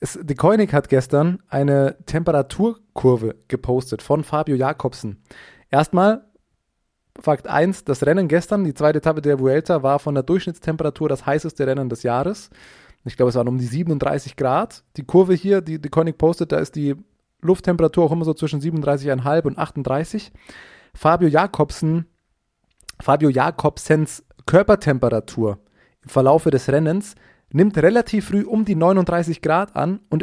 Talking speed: 145 wpm